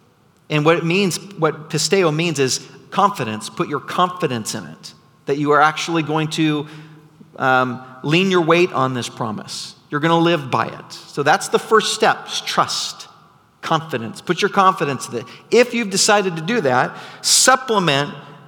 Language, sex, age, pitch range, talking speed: English, male, 40-59, 145-180 Hz, 170 wpm